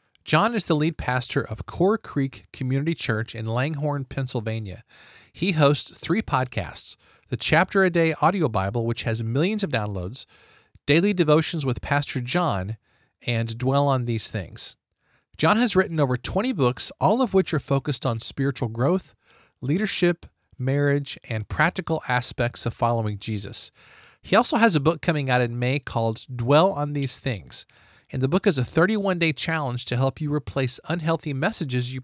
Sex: male